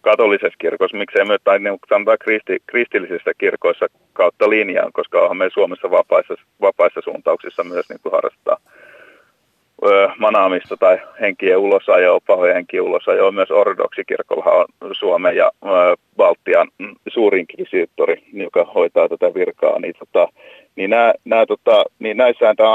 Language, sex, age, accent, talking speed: Finnish, male, 30-49, native, 135 wpm